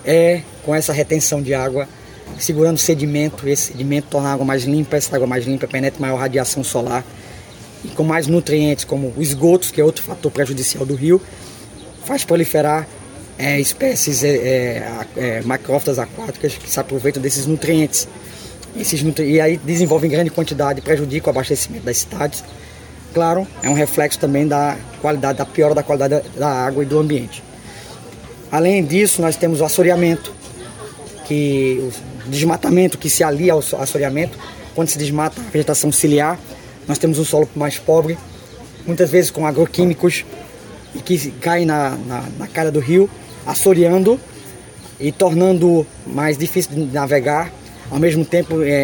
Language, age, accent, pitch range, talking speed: Portuguese, 20-39, Brazilian, 135-160 Hz, 155 wpm